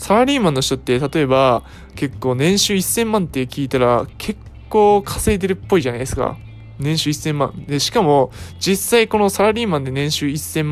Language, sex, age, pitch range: Japanese, male, 20-39, 125-175 Hz